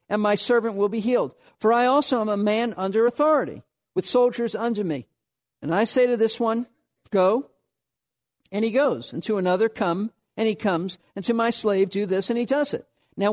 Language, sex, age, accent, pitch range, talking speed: English, male, 50-69, American, 180-245 Hz, 205 wpm